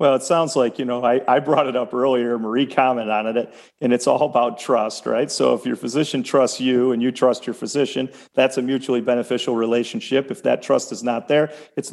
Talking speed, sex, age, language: 225 wpm, male, 40-59, English